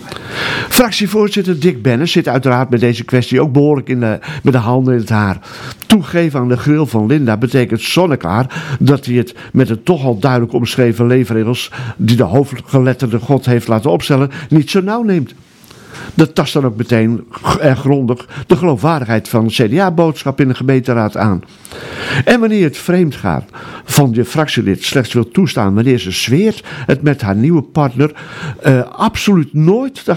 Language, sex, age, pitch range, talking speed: Dutch, male, 50-69, 115-150 Hz, 170 wpm